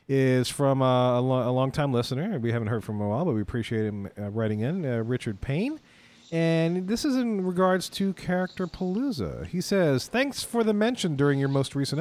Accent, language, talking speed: American, English, 220 wpm